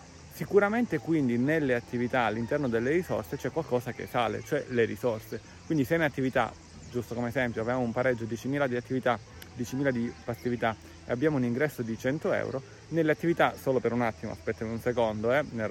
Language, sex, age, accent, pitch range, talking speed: Italian, male, 30-49, native, 115-140 Hz, 185 wpm